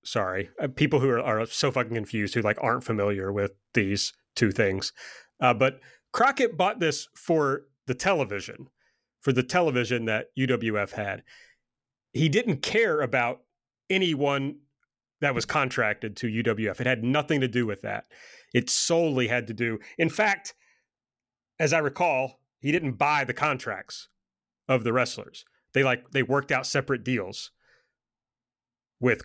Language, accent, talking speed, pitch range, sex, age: English, American, 150 wpm, 120-165 Hz, male, 30-49